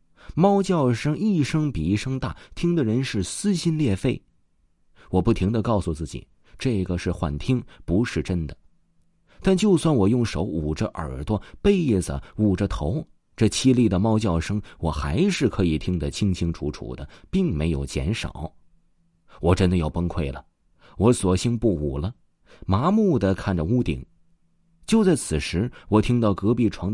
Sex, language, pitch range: male, Chinese, 80-115 Hz